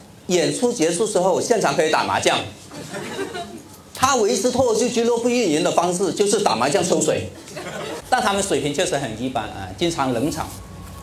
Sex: male